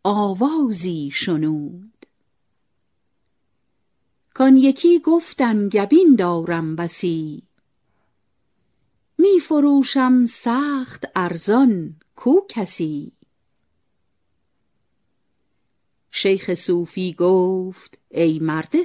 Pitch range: 170-275 Hz